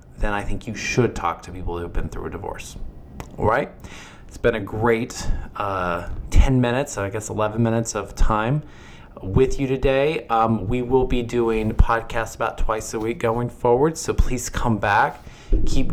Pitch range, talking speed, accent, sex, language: 95-120 Hz, 185 wpm, American, male, English